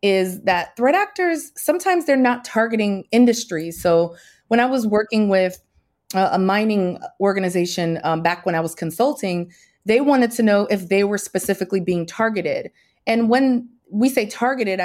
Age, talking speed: 30-49, 160 wpm